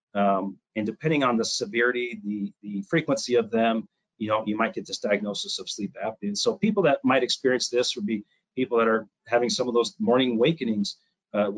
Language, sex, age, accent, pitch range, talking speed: English, male, 40-59, American, 110-130 Hz, 205 wpm